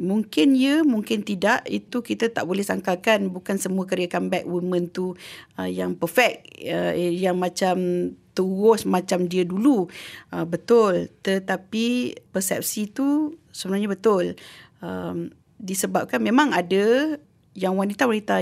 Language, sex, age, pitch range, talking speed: English, female, 40-59, 175-215 Hz, 130 wpm